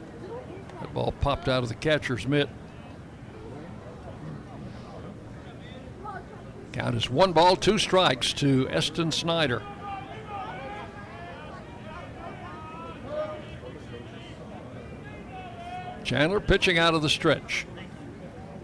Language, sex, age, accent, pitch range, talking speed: English, male, 60-79, American, 125-165 Hz, 75 wpm